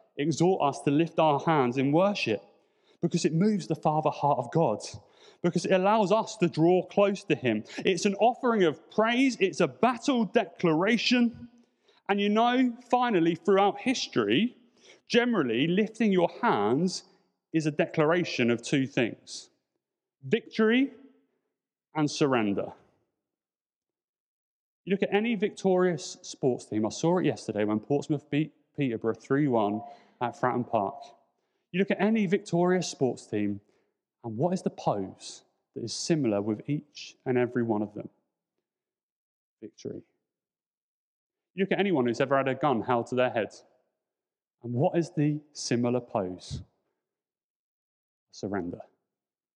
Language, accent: English, British